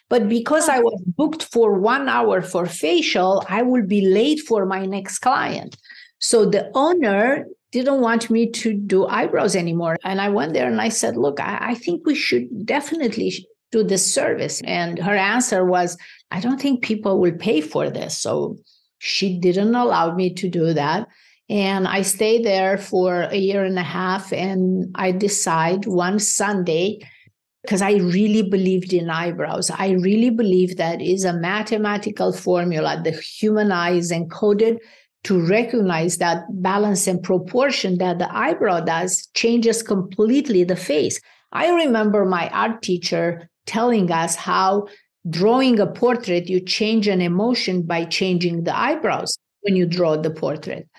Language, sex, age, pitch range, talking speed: English, female, 50-69, 180-225 Hz, 160 wpm